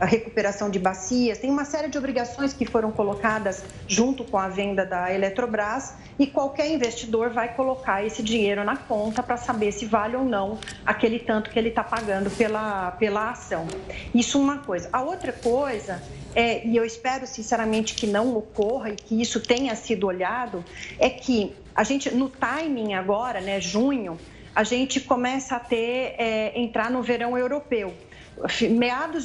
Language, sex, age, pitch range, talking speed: Portuguese, female, 40-59, 220-270 Hz, 160 wpm